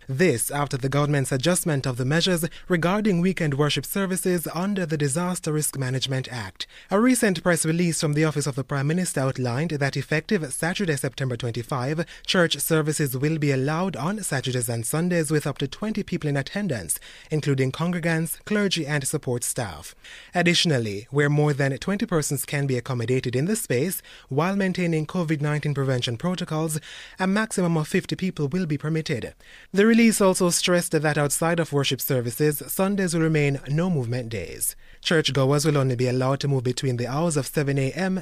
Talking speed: 175 wpm